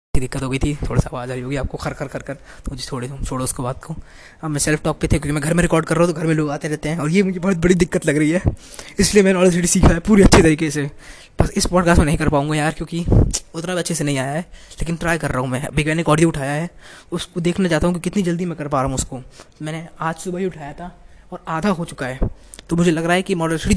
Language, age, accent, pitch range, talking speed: Hindi, 20-39, native, 145-185 Hz, 290 wpm